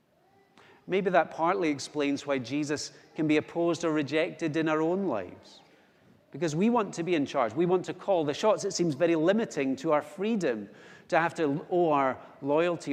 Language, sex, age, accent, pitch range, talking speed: English, male, 40-59, British, 160-215 Hz, 190 wpm